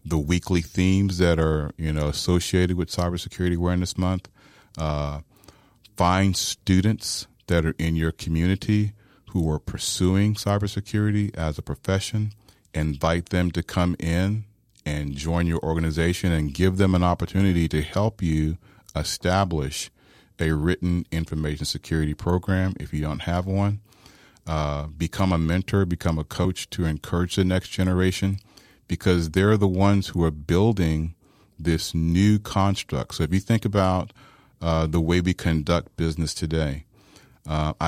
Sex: male